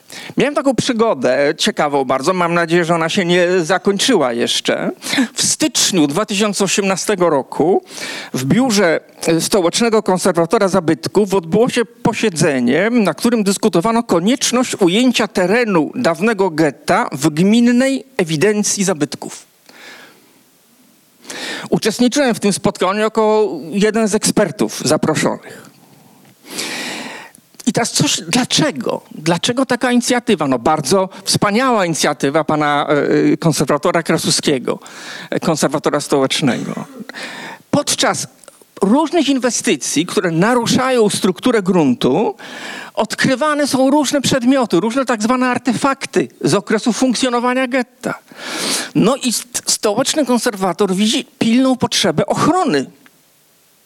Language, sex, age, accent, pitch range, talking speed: Polish, male, 50-69, native, 185-250 Hz, 100 wpm